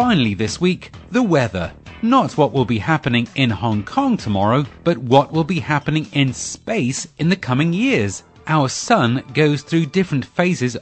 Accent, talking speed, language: British, 170 wpm, English